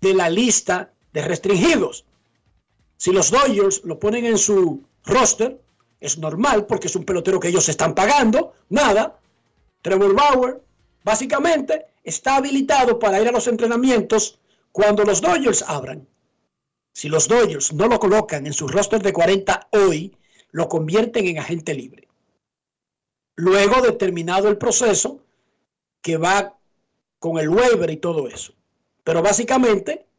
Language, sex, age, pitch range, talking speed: Spanish, male, 60-79, 190-240 Hz, 135 wpm